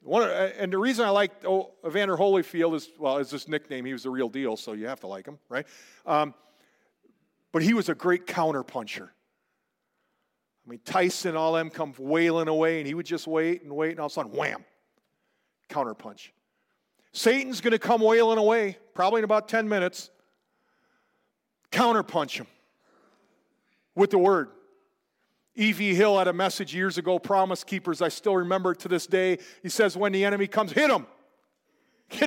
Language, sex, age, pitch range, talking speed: English, male, 40-59, 160-220 Hz, 180 wpm